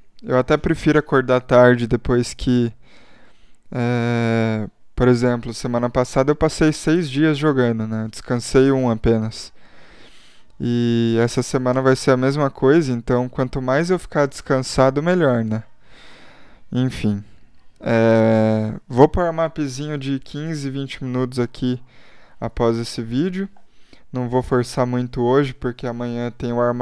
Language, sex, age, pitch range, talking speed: Portuguese, male, 20-39, 120-140 Hz, 135 wpm